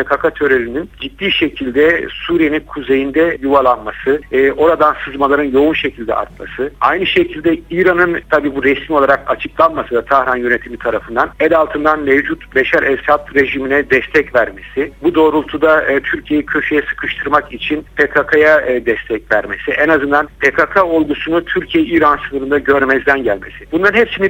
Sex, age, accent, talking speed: male, 60-79, native, 135 wpm